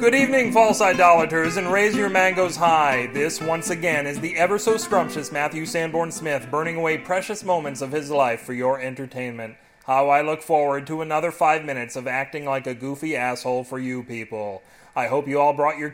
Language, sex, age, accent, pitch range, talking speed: English, male, 30-49, American, 140-180 Hz, 200 wpm